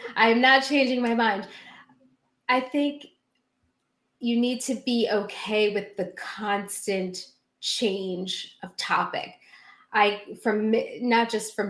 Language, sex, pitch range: English, female, 185-220 Hz